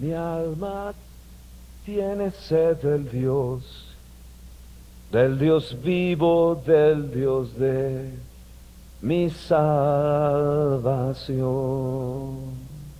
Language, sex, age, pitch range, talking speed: Spanish, male, 50-69, 135-205 Hz, 65 wpm